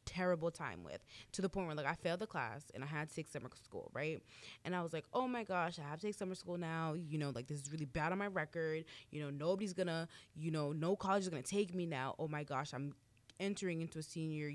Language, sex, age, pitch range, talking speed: English, female, 20-39, 140-180 Hz, 270 wpm